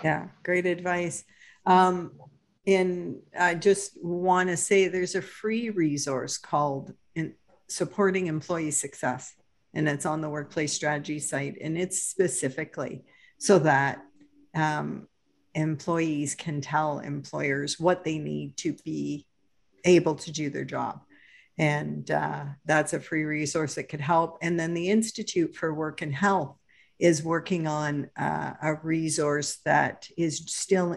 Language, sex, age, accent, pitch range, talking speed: English, female, 50-69, American, 150-180 Hz, 140 wpm